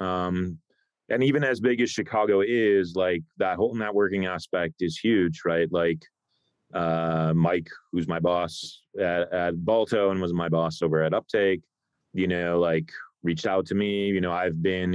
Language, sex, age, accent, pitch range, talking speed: English, male, 30-49, American, 85-105 Hz, 175 wpm